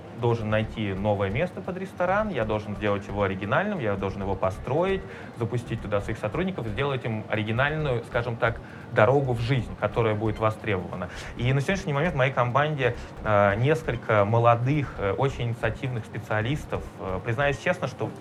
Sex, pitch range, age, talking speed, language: male, 105-135 Hz, 20-39, 150 wpm, Russian